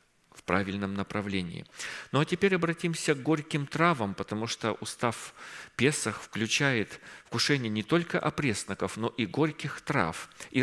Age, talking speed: 40-59, 135 wpm